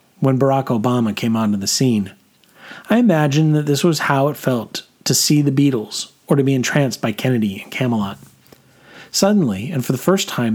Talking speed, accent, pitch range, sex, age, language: 190 wpm, American, 115-145 Hz, male, 40-59, English